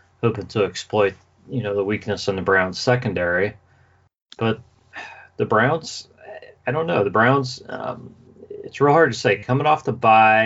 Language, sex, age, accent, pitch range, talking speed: English, male, 40-59, American, 95-120 Hz, 155 wpm